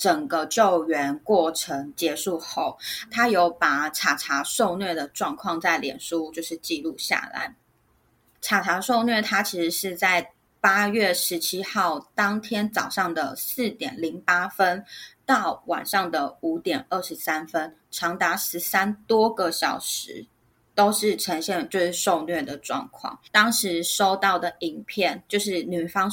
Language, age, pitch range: Chinese, 20-39, 170-215 Hz